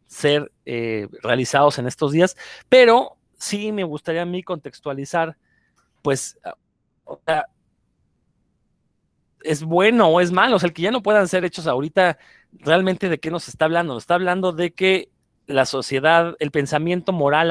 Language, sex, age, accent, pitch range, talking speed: Spanish, male, 40-59, Mexican, 150-185 Hz, 160 wpm